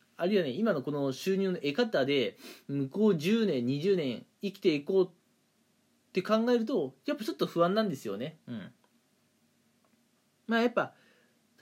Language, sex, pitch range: Japanese, male, 145-215 Hz